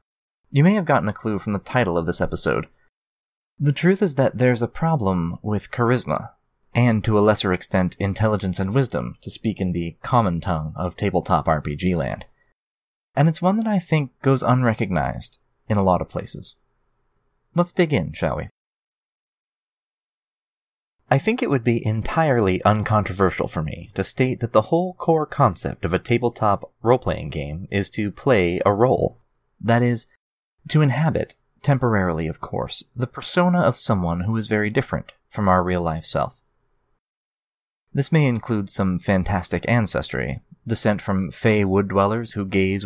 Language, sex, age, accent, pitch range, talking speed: English, male, 30-49, American, 95-125 Hz, 160 wpm